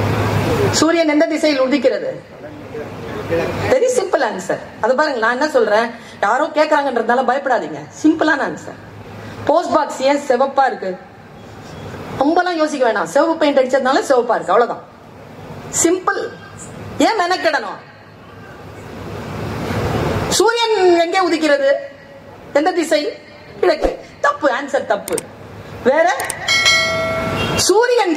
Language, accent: Tamil, native